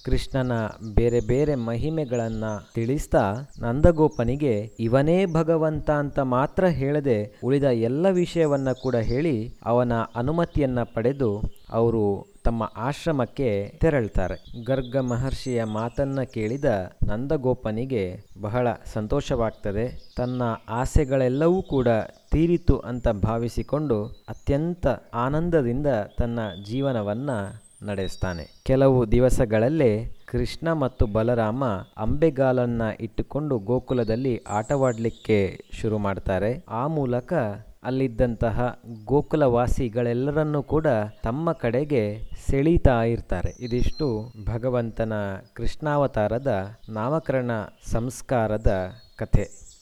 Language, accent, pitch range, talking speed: Kannada, native, 110-135 Hz, 80 wpm